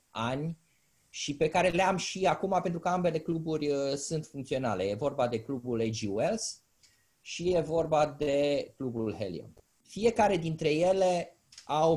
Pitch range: 130-175 Hz